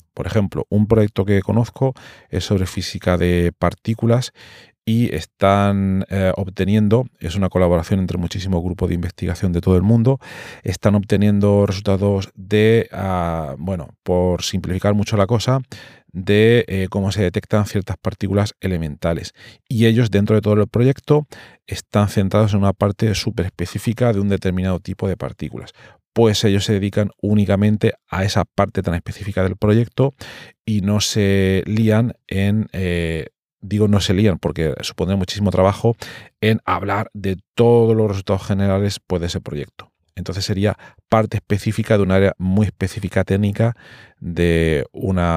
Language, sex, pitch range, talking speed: Spanish, male, 95-110 Hz, 150 wpm